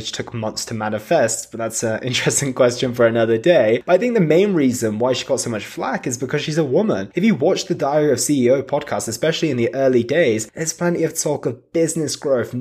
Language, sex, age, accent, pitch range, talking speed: English, male, 20-39, British, 115-160 Hz, 230 wpm